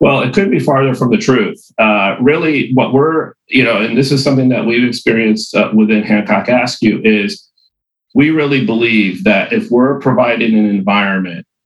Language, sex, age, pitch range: English, male, 40-59, 105-130 Hz